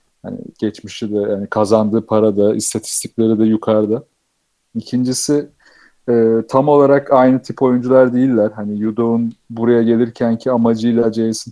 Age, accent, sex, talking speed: 40-59, native, male, 130 wpm